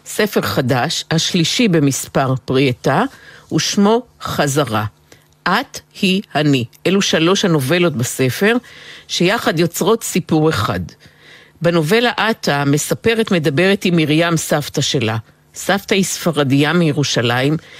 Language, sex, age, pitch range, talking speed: Hebrew, female, 50-69, 145-190 Hz, 105 wpm